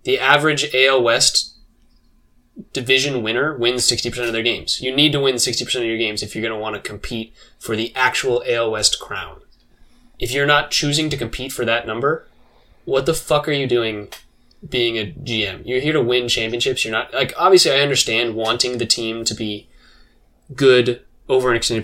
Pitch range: 110-135 Hz